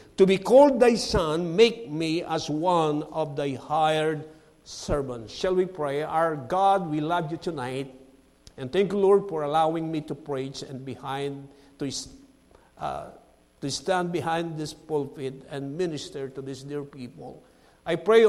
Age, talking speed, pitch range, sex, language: 50-69, 160 wpm, 145-185 Hz, male, English